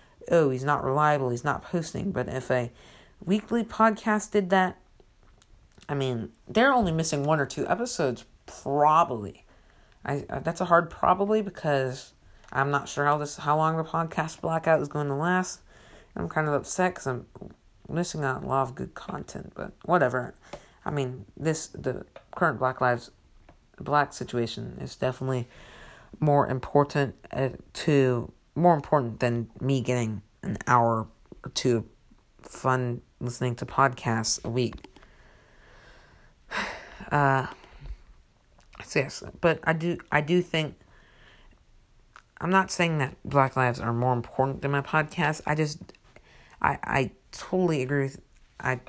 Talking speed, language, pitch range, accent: 145 wpm, English, 125-160 Hz, American